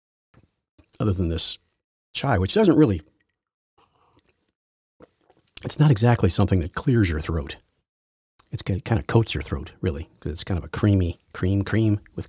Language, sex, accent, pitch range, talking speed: English, male, American, 85-115 Hz, 150 wpm